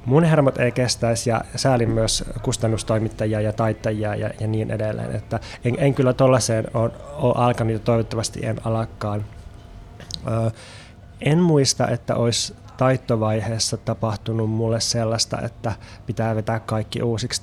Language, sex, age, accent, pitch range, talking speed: Finnish, male, 20-39, native, 110-120 Hz, 135 wpm